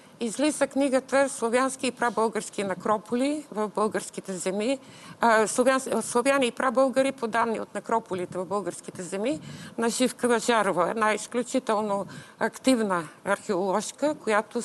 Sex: female